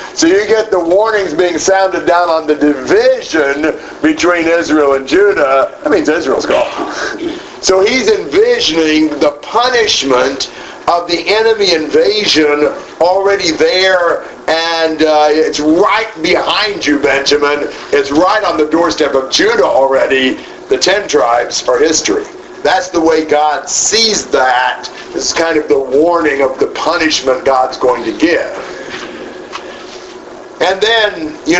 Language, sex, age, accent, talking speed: English, male, 50-69, American, 135 wpm